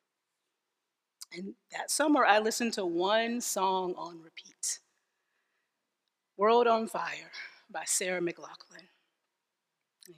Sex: female